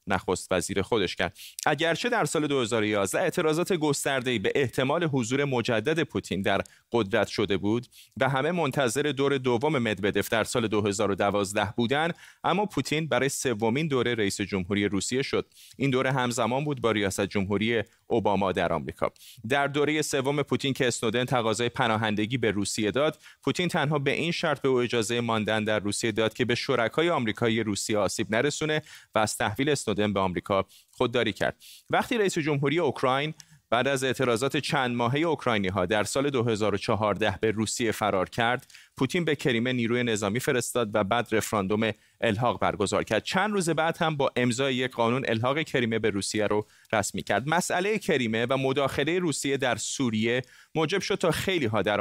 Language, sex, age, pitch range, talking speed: Persian, male, 30-49, 110-140 Hz, 165 wpm